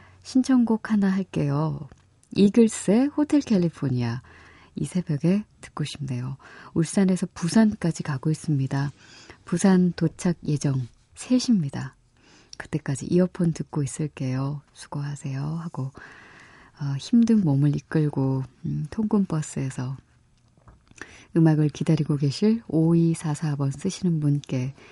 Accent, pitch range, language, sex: native, 135-190 Hz, Korean, female